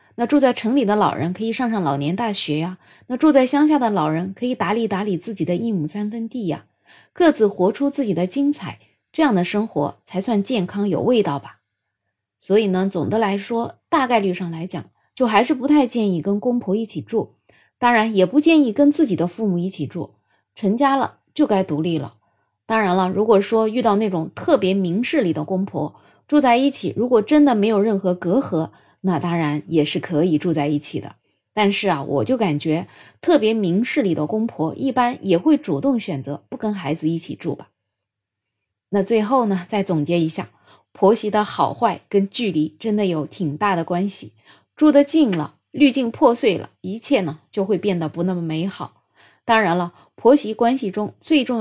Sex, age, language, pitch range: female, 20-39, Chinese, 165-235 Hz